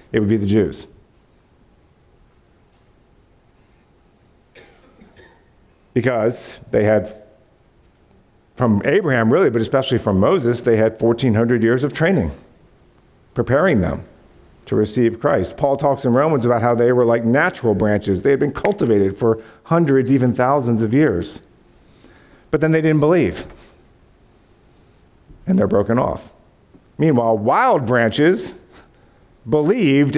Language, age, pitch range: English, 50-69, 105-140 Hz